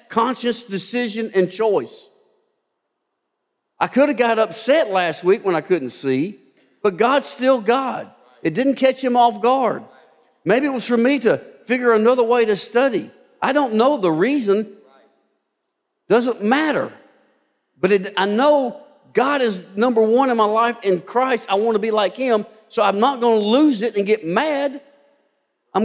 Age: 50-69